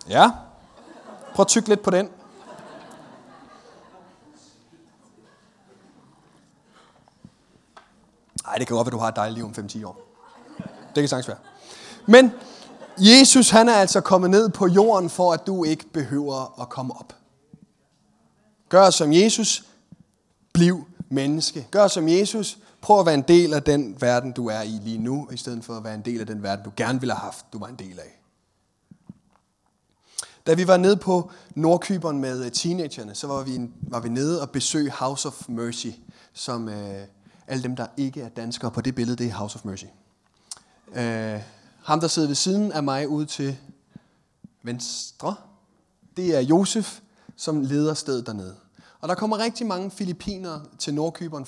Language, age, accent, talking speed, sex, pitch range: Danish, 30-49, native, 170 wpm, male, 120-185 Hz